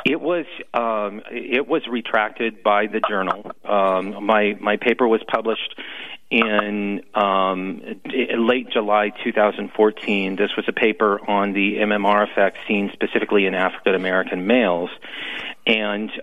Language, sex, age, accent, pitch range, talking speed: English, male, 40-59, American, 100-115 Hz, 130 wpm